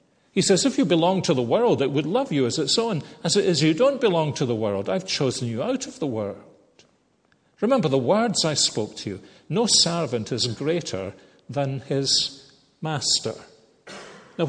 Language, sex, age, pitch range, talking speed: English, male, 50-69, 110-145 Hz, 190 wpm